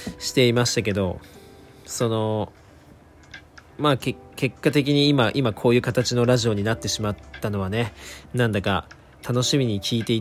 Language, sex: Japanese, male